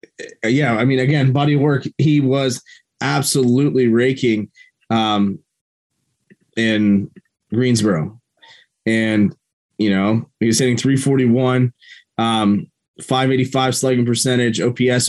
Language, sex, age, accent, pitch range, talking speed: English, male, 20-39, American, 115-135 Hz, 100 wpm